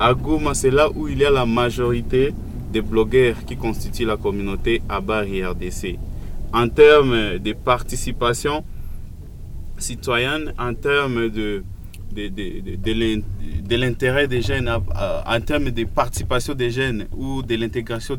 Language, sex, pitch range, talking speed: French, male, 100-120 Hz, 140 wpm